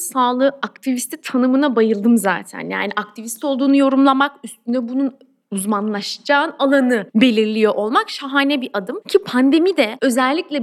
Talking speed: 125 wpm